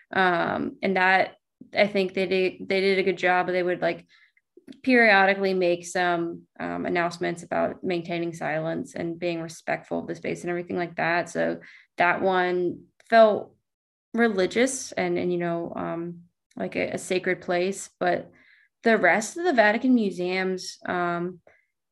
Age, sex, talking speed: 20-39, female, 155 wpm